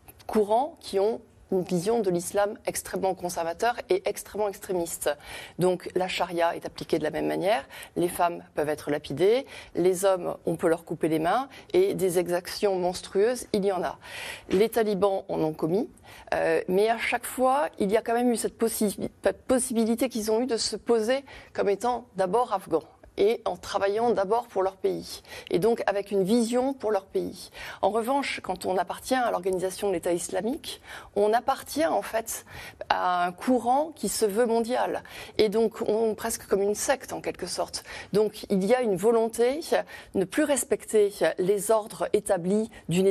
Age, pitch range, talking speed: 30-49, 190-240 Hz, 185 wpm